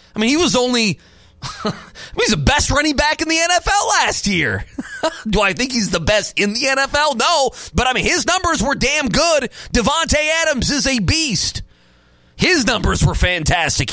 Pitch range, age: 200-290 Hz, 30-49